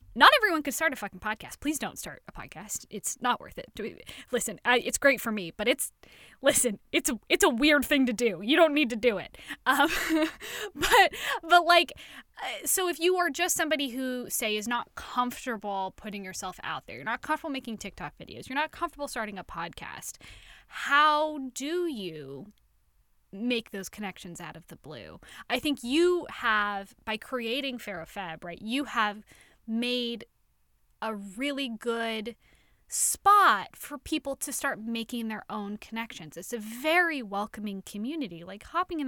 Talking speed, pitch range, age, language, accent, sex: 175 wpm, 215-305 Hz, 10-29, English, American, female